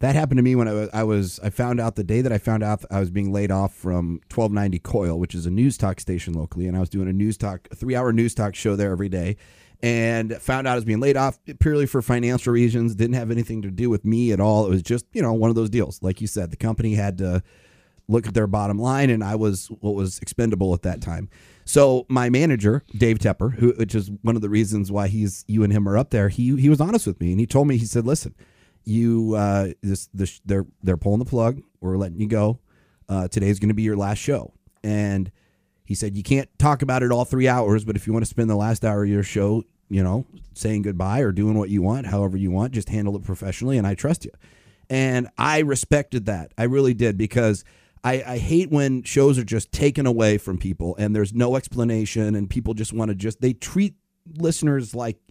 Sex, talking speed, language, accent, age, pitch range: male, 250 wpm, English, American, 30-49, 100-120 Hz